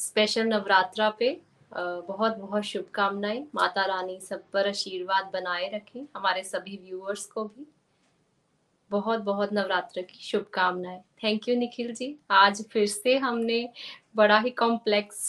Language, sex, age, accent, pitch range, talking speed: Hindi, female, 20-39, native, 200-225 Hz, 130 wpm